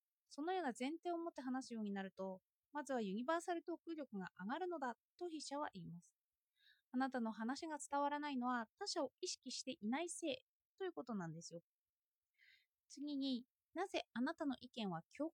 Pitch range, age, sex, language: 240-330 Hz, 20-39, female, Japanese